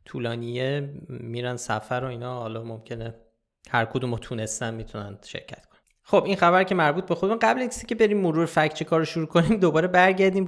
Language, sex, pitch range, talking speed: Persian, male, 120-160 Hz, 190 wpm